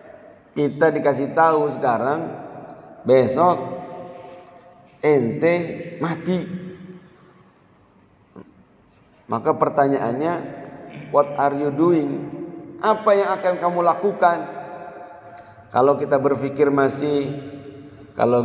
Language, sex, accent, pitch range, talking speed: Indonesian, male, native, 135-175 Hz, 75 wpm